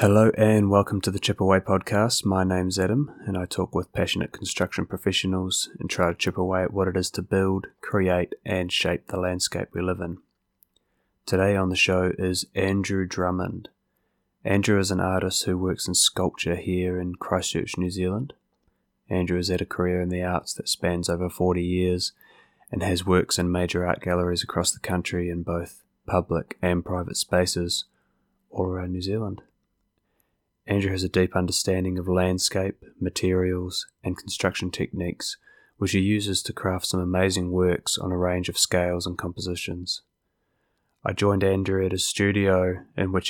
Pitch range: 90-95 Hz